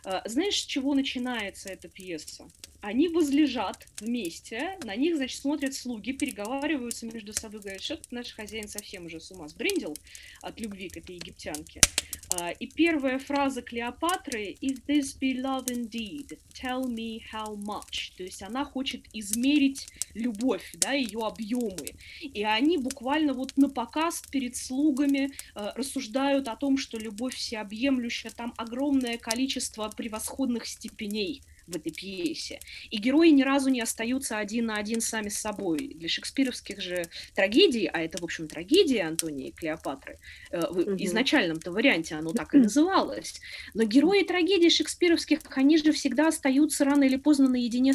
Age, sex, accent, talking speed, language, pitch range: 20-39, female, native, 145 wpm, Russian, 215-285 Hz